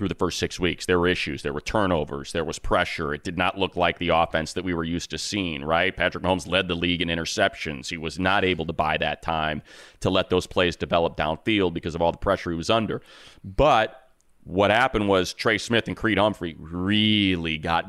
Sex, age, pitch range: male, 30-49, 80-100 Hz